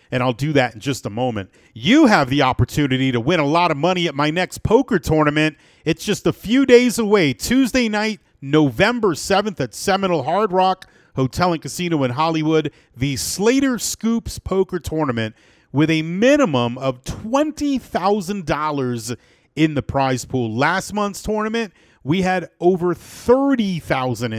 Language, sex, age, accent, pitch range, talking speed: English, male, 40-59, American, 130-180 Hz, 155 wpm